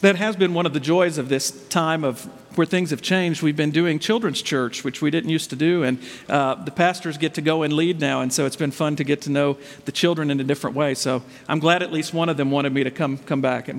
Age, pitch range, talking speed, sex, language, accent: 50-69, 145-200 Hz, 285 wpm, male, English, American